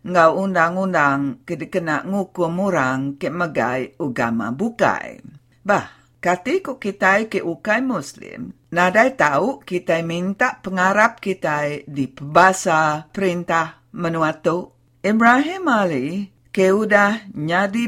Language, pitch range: English, 145-205 Hz